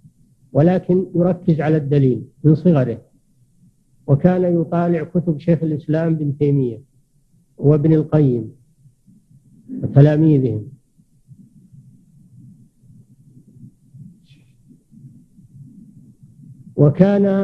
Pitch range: 150-180 Hz